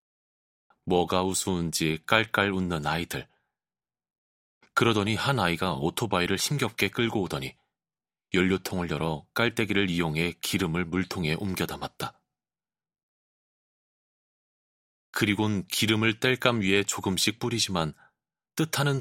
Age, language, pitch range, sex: 30-49, Korean, 85-110 Hz, male